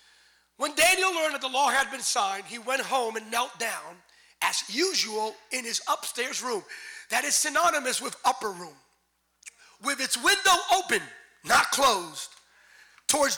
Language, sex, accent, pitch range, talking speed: English, male, American, 250-335 Hz, 150 wpm